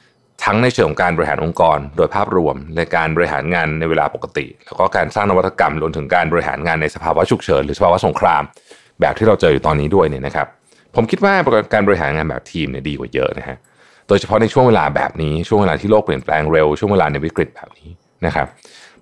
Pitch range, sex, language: 80-120 Hz, male, Thai